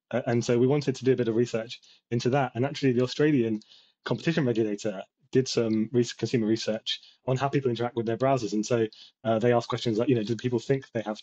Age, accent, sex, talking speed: 20-39, British, male, 235 wpm